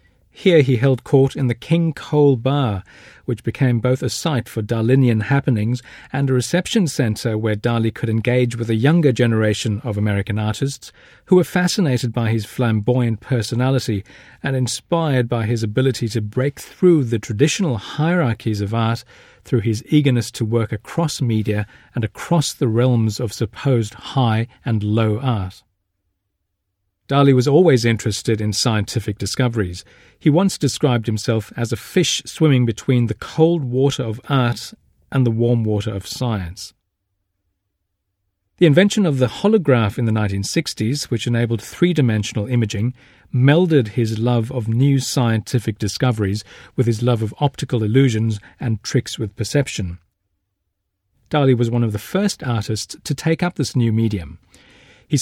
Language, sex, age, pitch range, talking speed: English, male, 40-59, 110-135 Hz, 150 wpm